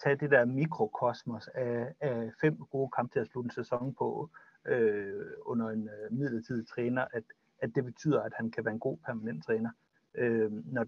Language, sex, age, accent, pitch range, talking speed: Danish, male, 60-79, native, 115-145 Hz, 175 wpm